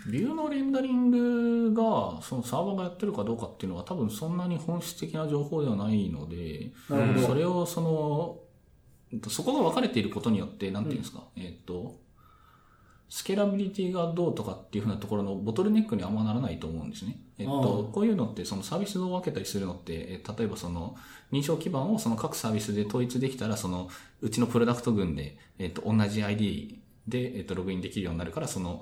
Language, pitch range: Japanese, 100-155 Hz